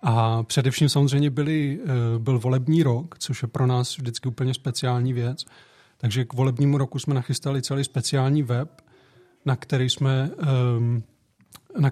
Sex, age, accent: male, 40-59, native